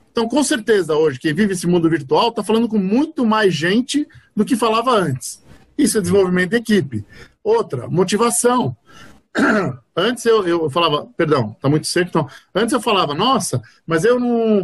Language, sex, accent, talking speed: Portuguese, male, Brazilian, 170 wpm